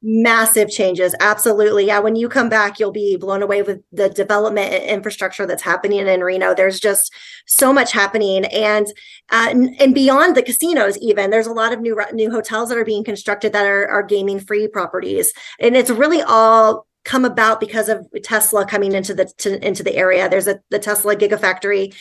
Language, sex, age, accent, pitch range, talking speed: English, female, 20-39, American, 205-245 Hz, 195 wpm